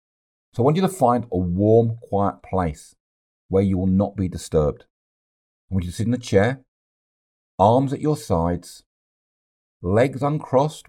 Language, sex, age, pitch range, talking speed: English, male, 50-69, 80-105 Hz, 165 wpm